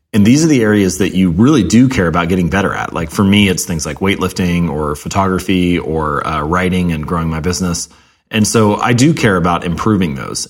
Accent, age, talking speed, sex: American, 30-49, 215 wpm, male